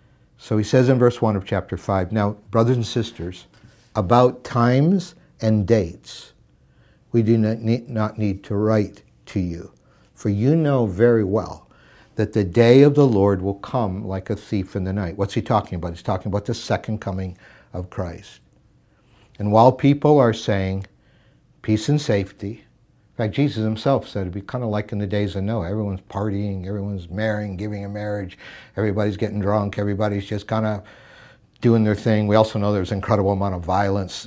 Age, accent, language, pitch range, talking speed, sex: 60-79, American, English, 95-110 Hz, 185 wpm, male